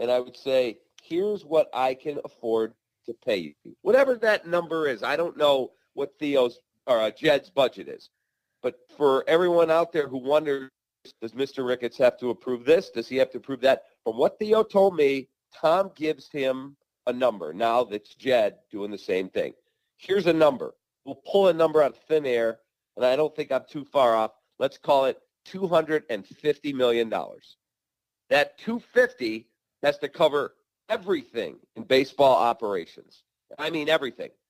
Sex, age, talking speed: male, 40-59, 170 wpm